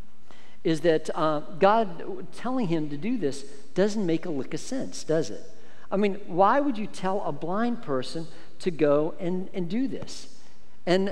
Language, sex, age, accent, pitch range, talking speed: English, male, 50-69, American, 160-205 Hz, 180 wpm